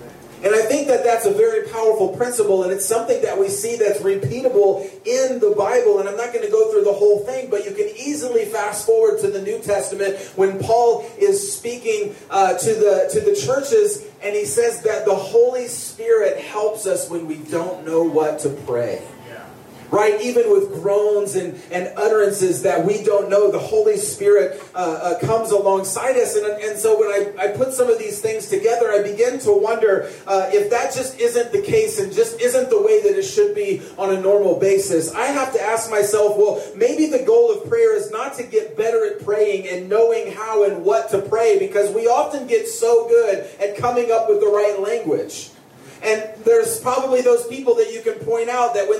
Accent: American